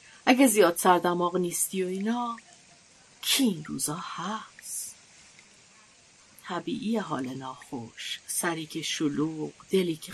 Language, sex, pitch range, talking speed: Persian, female, 170-230 Hz, 105 wpm